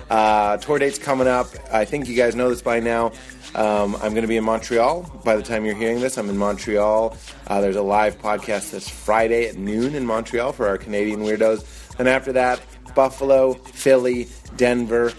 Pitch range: 105-125 Hz